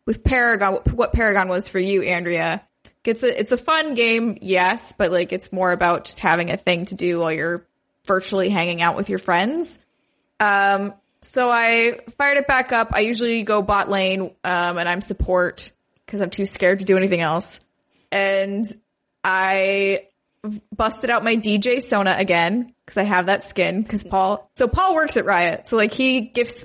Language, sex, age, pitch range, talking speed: English, female, 20-39, 190-235 Hz, 185 wpm